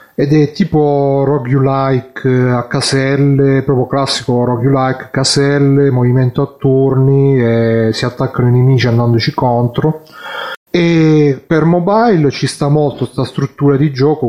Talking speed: 125 wpm